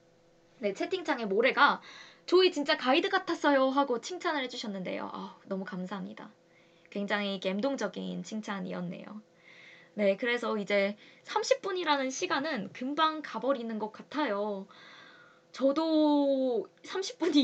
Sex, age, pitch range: female, 20-39, 205-300 Hz